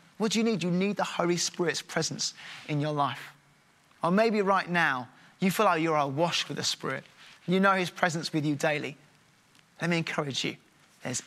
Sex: male